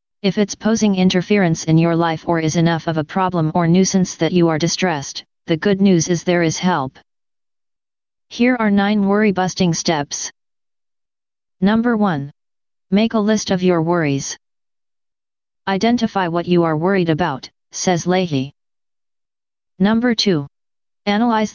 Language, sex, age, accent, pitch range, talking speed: English, female, 30-49, American, 165-195 Hz, 140 wpm